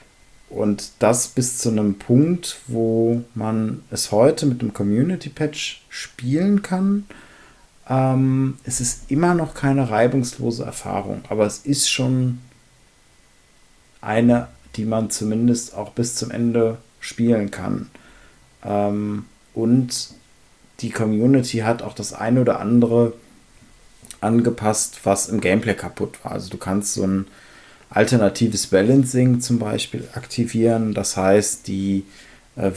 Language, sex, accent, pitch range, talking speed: German, male, German, 105-120 Hz, 125 wpm